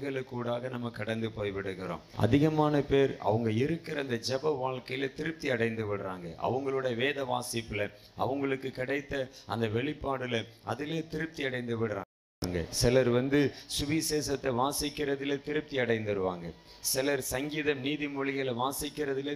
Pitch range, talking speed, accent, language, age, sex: 115-145 Hz, 85 wpm, native, Tamil, 50-69, male